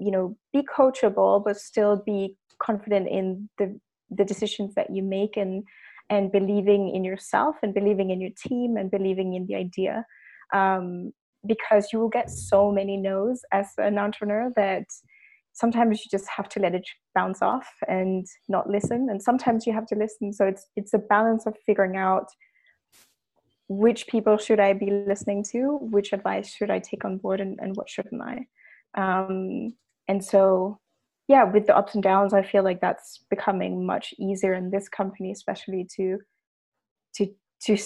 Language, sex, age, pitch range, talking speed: English, female, 20-39, 190-215 Hz, 175 wpm